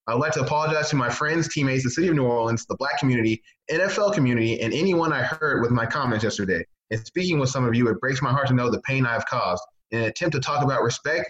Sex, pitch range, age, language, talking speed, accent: male, 115-140 Hz, 20-39, English, 260 wpm, American